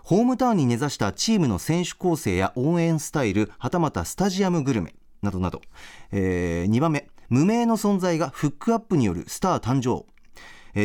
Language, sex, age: Japanese, male, 40-59